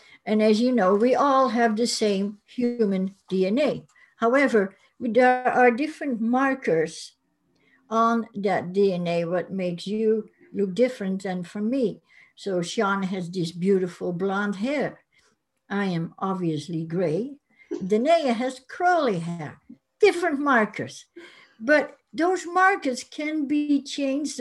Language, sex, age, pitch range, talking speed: English, female, 60-79, 200-265 Hz, 125 wpm